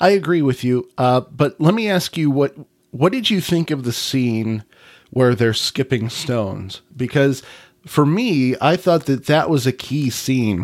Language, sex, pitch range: English, male, 115-140 Hz